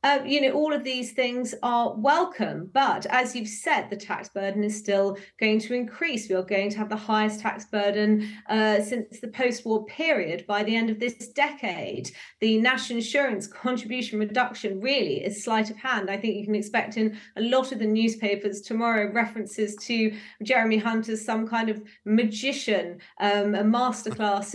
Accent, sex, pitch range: British, female, 210-245 Hz